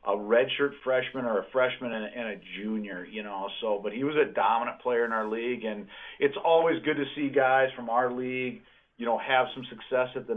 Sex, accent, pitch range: male, American, 115-135 Hz